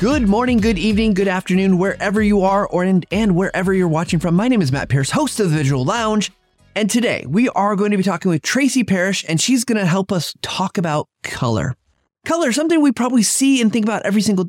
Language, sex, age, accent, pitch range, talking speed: English, male, 30-49, American, 140-210 Hz, 230 wpm